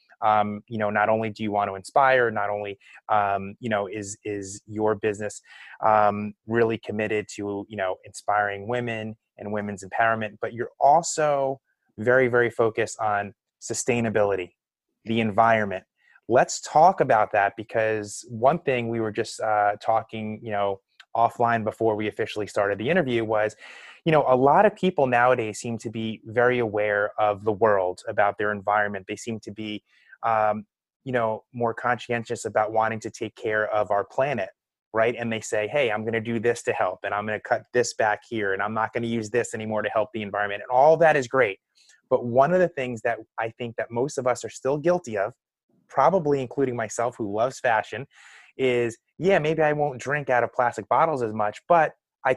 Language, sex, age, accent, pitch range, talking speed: English, male, 20-39, American, 105-125 Hz, 195 wpm